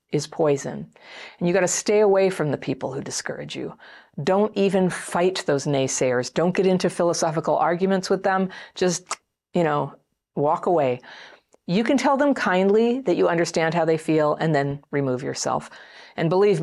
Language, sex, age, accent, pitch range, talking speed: English, female, 40-59, American, 150-200 Hz, 175 wpm